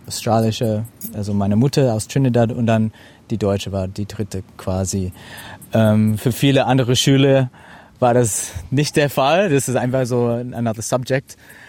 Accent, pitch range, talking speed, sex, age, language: German, 110-130 Hz, 155 wpm, male, 30-49, German